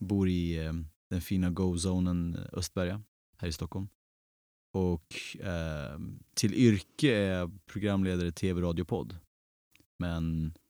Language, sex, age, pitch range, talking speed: Swedish, male, 30-49, 85-105 Hz, 100 wpm